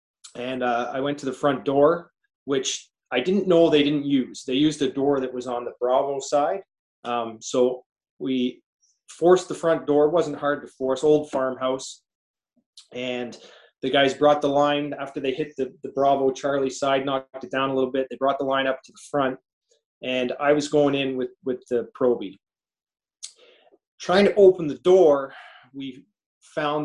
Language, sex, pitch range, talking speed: English, male, 125-150 Hz, 185 wpm